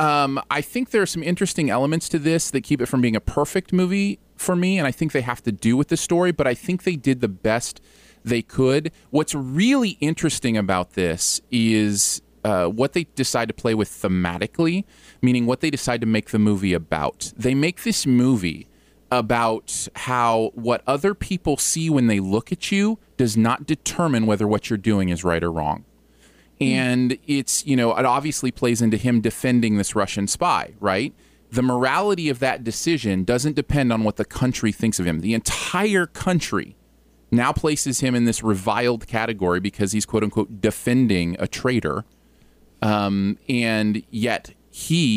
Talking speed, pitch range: 180 wpm, 105-145 Hz